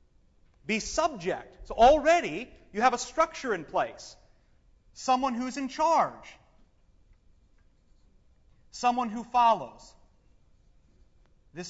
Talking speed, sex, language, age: 90 wpm, male, English, 40-59